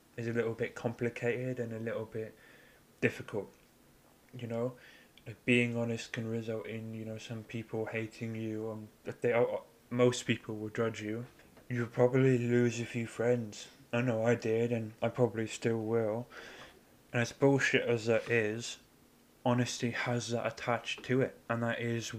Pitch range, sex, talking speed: 110-120 Hz, male, 170 wpm